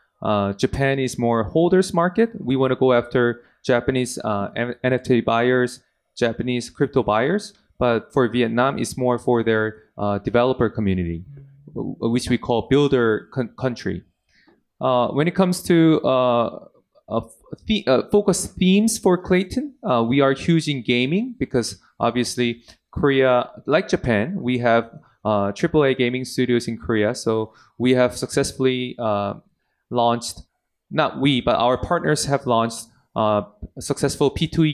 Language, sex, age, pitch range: Japanese, male, 20-39, 115-145 Hz